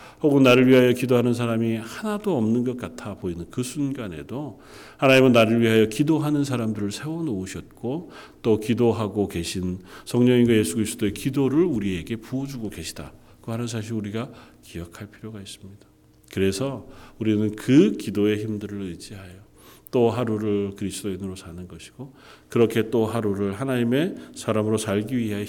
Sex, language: male, Korean